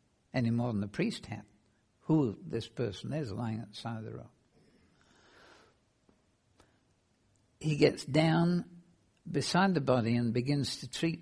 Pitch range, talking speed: 110-145 Hz, 145 wpm